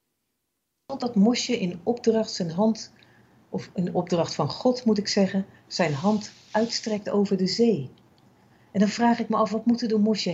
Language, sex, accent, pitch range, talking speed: Dutch, female, Dutch, 165-225 Hz, 175 wpm